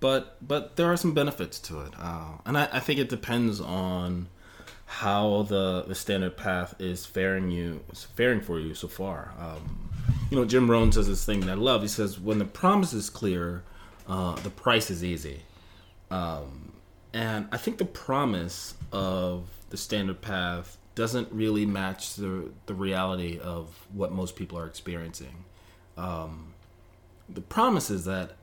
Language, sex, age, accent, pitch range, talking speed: English, male, 30-49, American, 90-110 Hz, 170 wpm